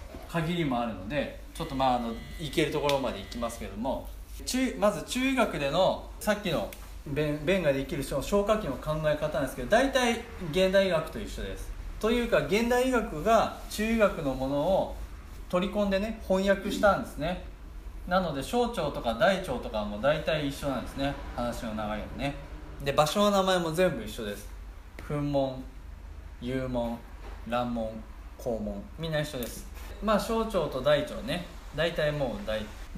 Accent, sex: native, male